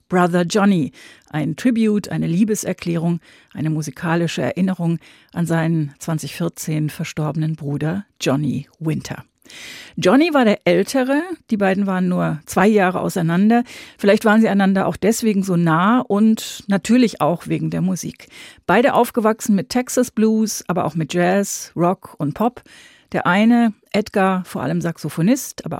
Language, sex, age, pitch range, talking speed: German, female, 40-59, 165-215 Hz, 140 wpm